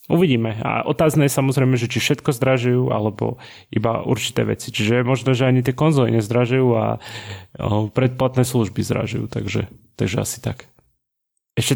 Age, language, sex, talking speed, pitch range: 20-39, Slovak, male, 155 wpm, 115-130 Hz